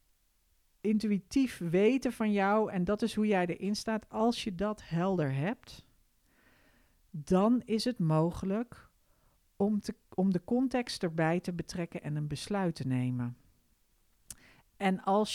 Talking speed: 135 wpm